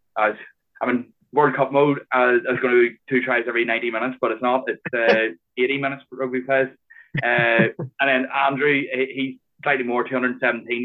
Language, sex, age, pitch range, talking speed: English, male, 20-39, 125-140 Hz, 210 wpm